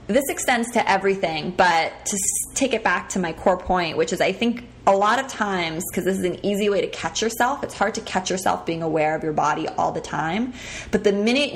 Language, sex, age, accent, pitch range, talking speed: English, female, 20-39, American, 175-225 Hz, 240 wpm